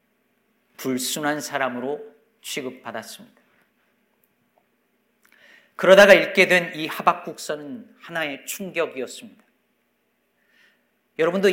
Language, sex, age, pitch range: Korean, male, 40-59, 175-225 Hz